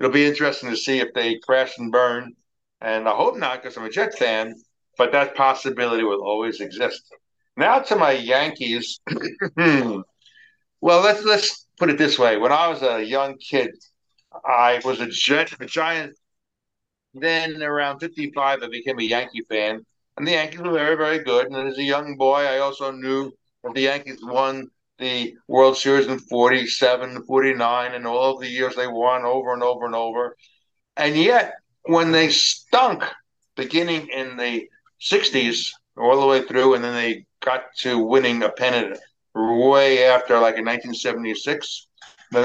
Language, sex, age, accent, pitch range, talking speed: English, male, 60-79, American, 120-140 Hz, 170 wpm